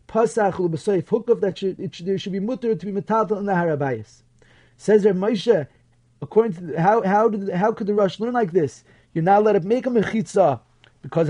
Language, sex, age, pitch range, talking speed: English, male, 30-49, 165-215 Hz, 230 wpm